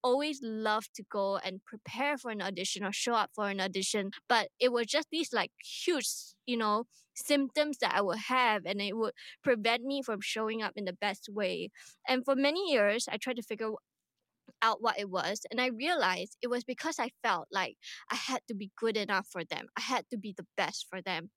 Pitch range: 200-250 Hz